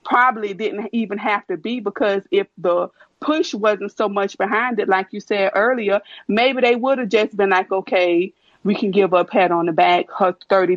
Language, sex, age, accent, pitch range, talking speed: English, female, 30-49, American, 180-210 Hz, 205 wpm